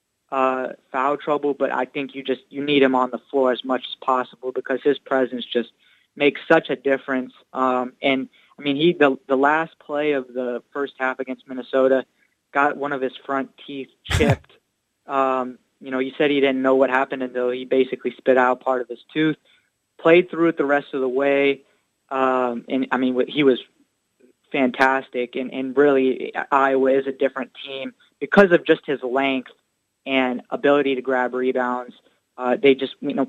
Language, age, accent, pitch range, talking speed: English, 20-39, American, 130-145 Hz, 190 wpm